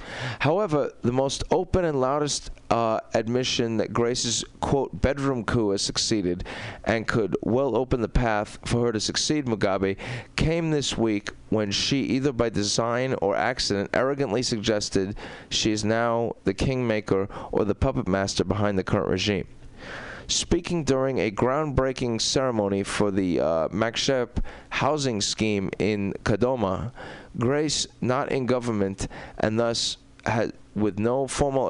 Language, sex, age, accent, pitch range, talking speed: English, male, 30-49, American, 105-130 Hz, 140 wpm